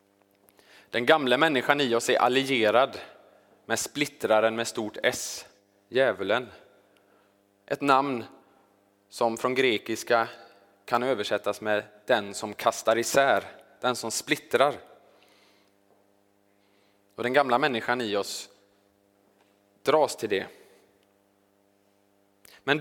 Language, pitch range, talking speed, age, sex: Swedish, 100-135 Hz, 100 wpm, 20-39, male